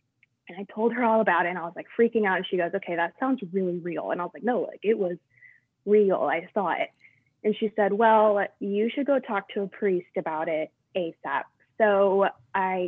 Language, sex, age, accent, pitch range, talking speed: English, female, 20-39, American, 175-210 Hz, 230 wpm